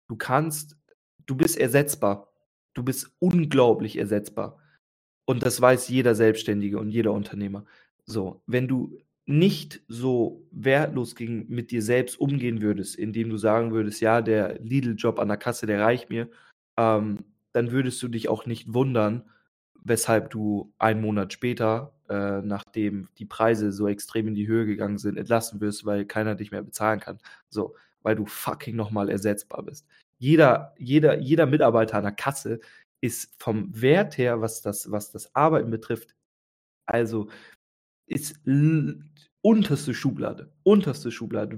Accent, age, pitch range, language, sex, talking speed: German, 20-39, 110-140 Hz, German, male, 150 wpm